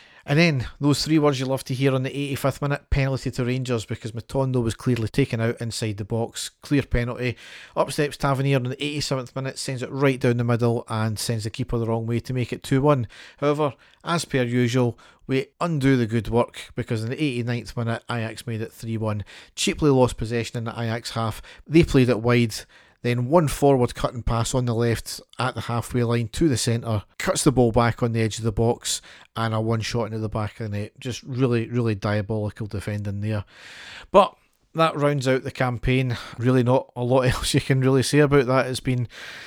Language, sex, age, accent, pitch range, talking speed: English, male, 40-59, British, 115-135 Hz, 210 wpm